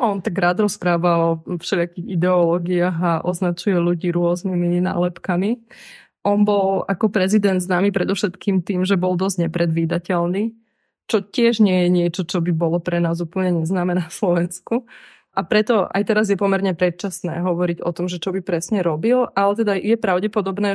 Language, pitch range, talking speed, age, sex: Slovak, 170-190 Hz, 160 wpm, 20-39, female